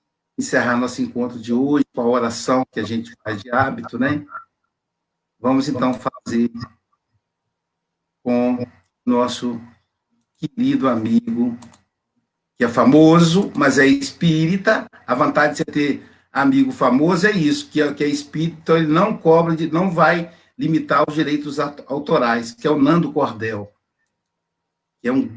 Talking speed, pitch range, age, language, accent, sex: 140 wpm, 140-195 Hz, 60-79, Portuguese, Brazilian, male